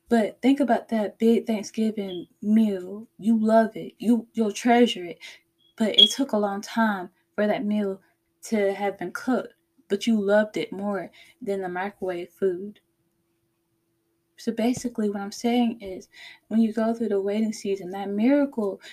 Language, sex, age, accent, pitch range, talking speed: English, female, 10-29, American, 195-230 Hz, 160 wpm